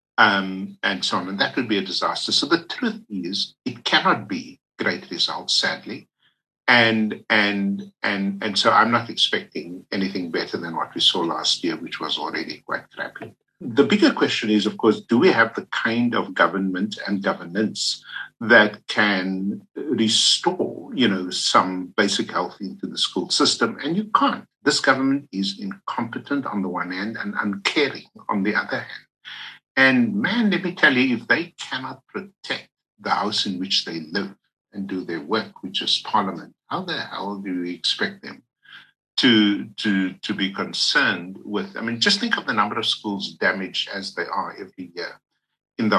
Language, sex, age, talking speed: English, male, 50-69, 180 wpm